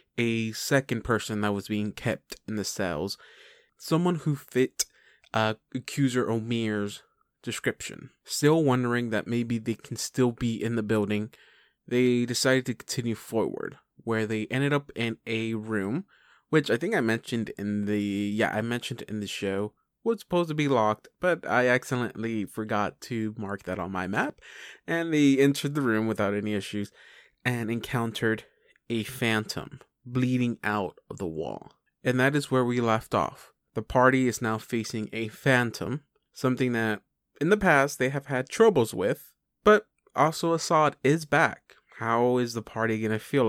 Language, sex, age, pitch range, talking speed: English, male, 20-39, 110-135 Hz, 165 wpm